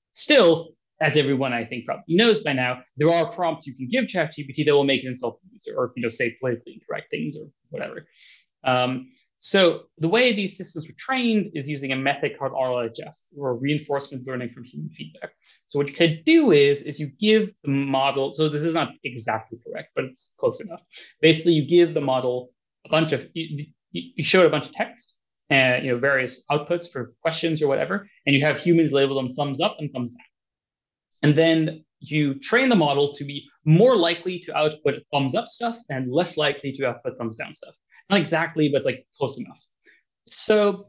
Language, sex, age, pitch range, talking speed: English, male, 20-39, 135-170 Hz, 205 wpm